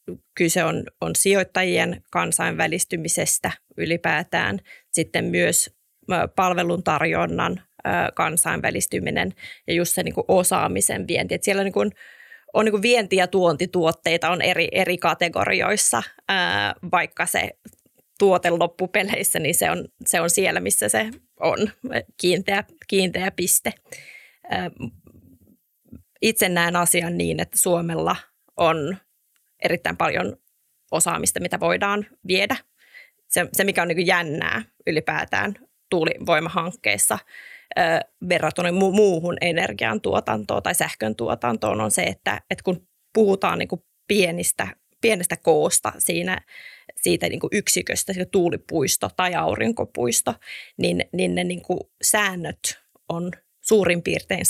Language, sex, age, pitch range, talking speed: Finnish, female, 20-39, 165-195 Hz, 100 wpm